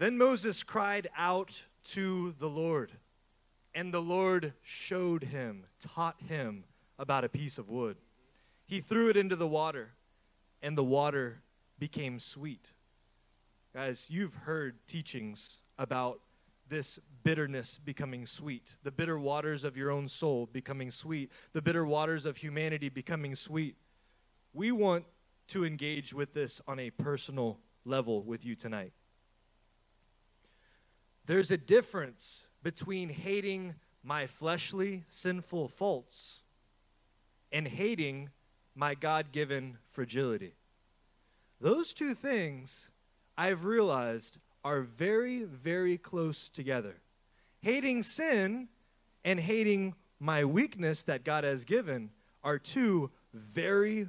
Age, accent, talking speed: 20-39, American, 115 wpm